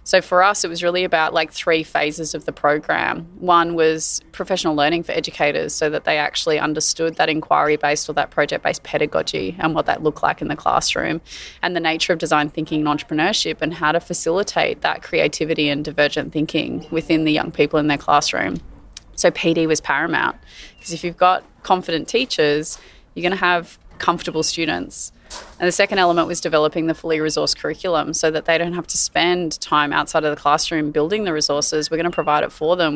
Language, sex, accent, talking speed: English, female, Australian, 205 wpm